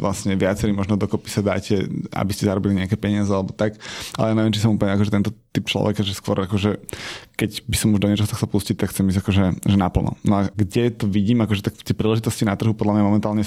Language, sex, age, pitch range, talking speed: Slovak, male, 20-39, 105-120 Hz, 245 wpm